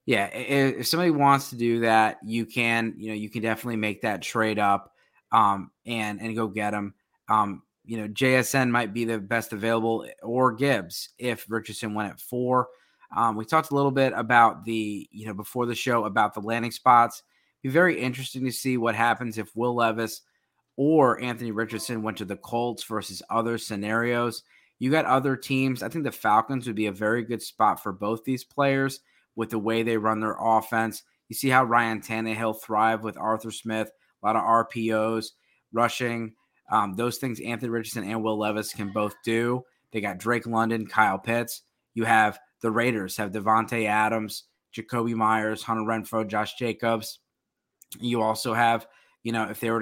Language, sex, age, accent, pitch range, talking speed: English, male, 20-39, American, 110-120 Hz, 185 wpm